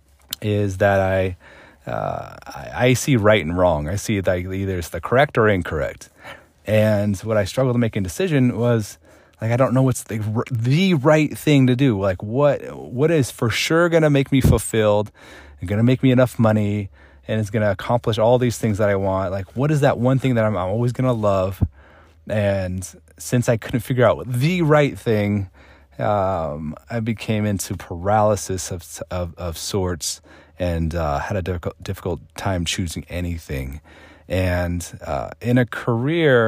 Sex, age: male, 30-49